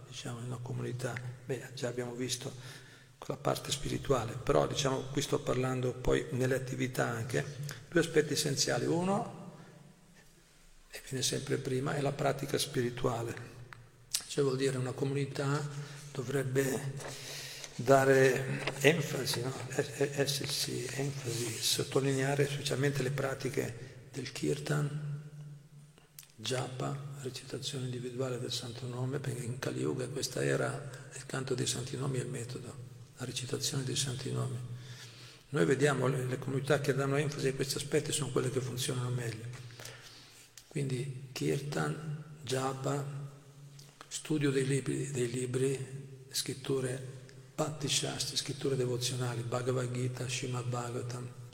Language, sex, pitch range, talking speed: Italian, male, 125-140 Hz, 125 wpm